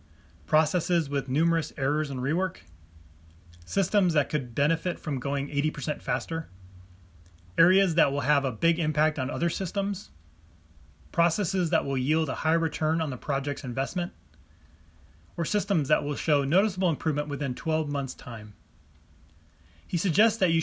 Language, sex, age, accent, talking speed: English, male, 30-49, American, 145 wpm